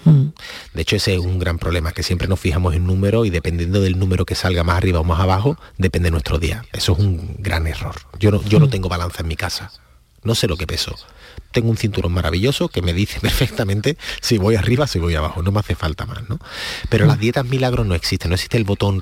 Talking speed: 240 wpm